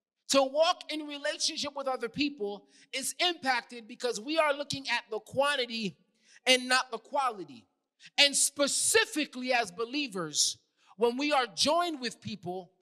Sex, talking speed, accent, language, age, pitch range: male, 140 wpm, American, English, 30-49, 220-310 Hz